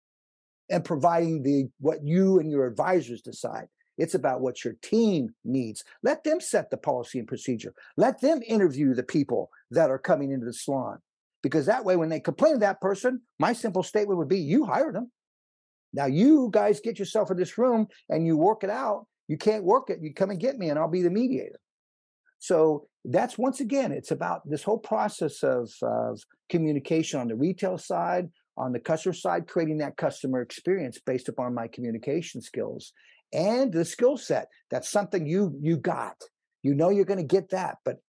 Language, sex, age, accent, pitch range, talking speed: English, male, 50-69, American, 140-210 Hz, 195 wpm